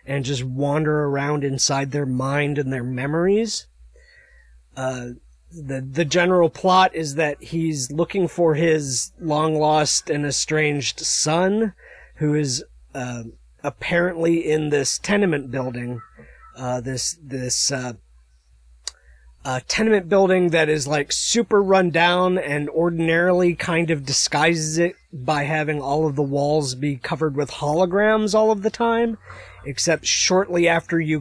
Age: 30-49